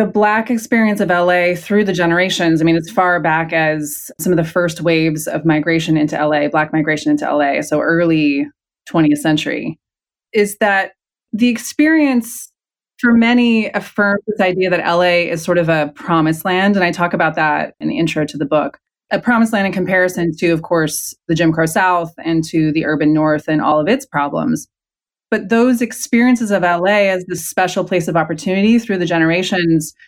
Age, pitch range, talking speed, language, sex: 20-39, 160-190 Hz, 190 wpm, English, female